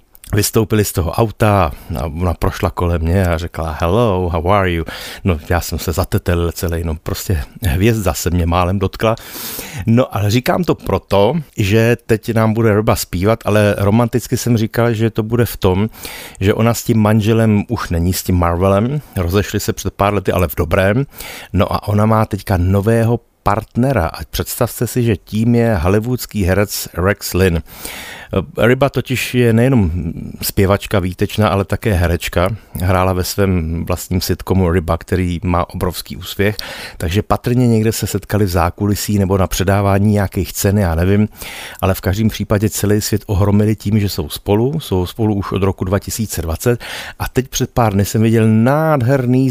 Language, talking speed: Czech, 170 wpm